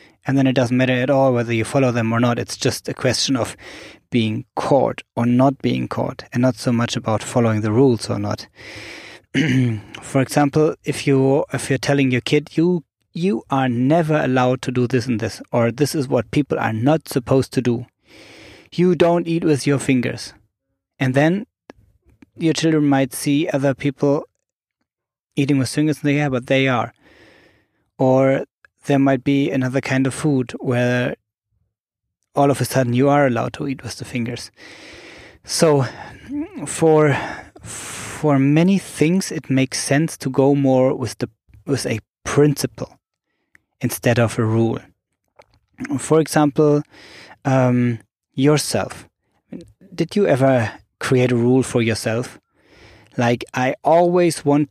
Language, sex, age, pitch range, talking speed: English, male, 20-39, 120-145 Hz, 155 wpm